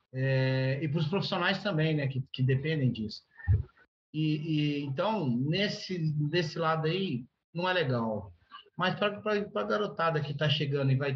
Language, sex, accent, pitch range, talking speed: Portuguese, male, Brazilian, 130-155 Hz, 160 wpm